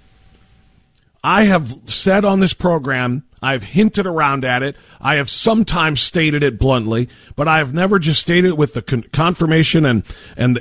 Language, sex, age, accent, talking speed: English, male, 40-59, American, 170 wpm